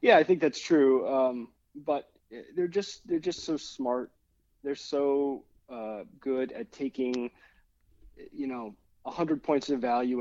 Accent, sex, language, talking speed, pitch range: American, male, English, 145 wpm, 110-135 Hz